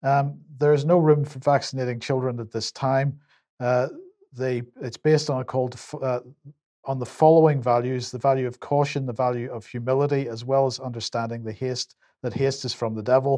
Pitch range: 120-140 Hz